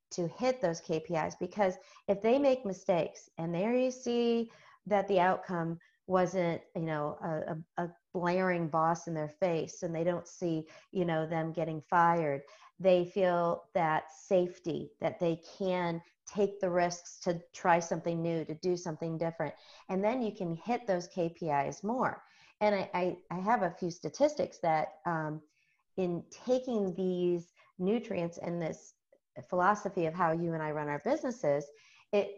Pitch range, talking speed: 165-205 Hz, 160 wpm